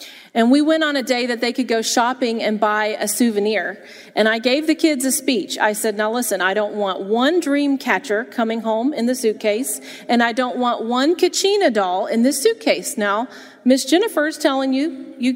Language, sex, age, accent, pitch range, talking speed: English, female, 40-59, American, 215-285 Hz, 210 wpm